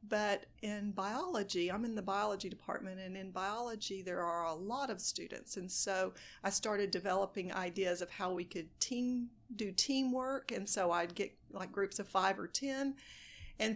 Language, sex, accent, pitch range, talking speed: English, female, American, 185-215 Hz, 180 wpm